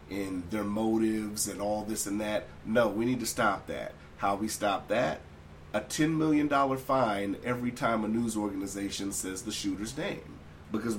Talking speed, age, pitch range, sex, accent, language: 175 wpm, 40-59, 75-120 Hz, male, American, English